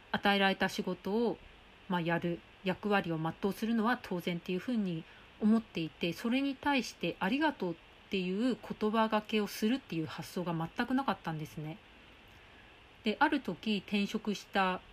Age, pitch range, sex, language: 40-59, 175-230 Hz, female, Japanese